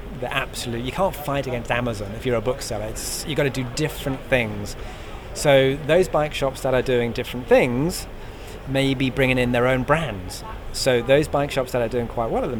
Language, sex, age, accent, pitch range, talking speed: English, male, 30-49, British, 115-140 Hz, 215 wpm